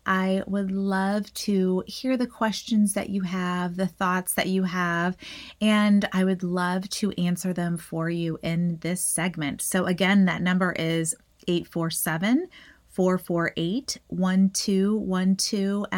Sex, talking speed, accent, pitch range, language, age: female, 125 wpm, American, 165-200 Hz, English, 30-49